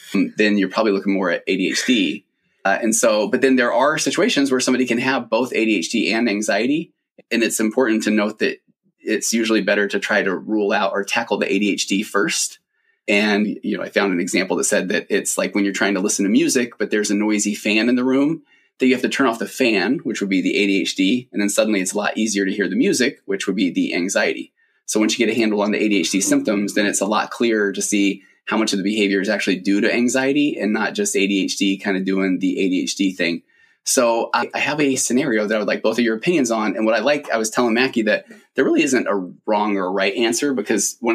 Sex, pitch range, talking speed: male, 100-130 Hz, 245 wpm